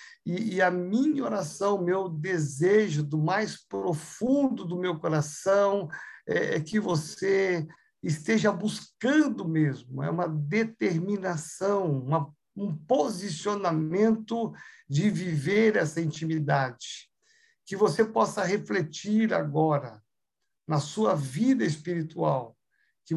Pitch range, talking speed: 160-210 Hz, 105 wpm